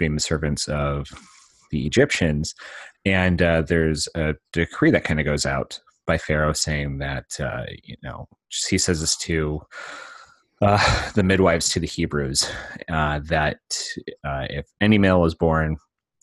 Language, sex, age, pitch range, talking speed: English, male, 30-49, 75-90 Hz, 150 wpm